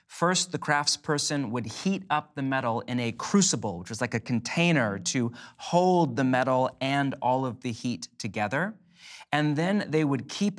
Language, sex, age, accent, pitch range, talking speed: English, male, 30-49, American, 120-155 Hz, 175 wpm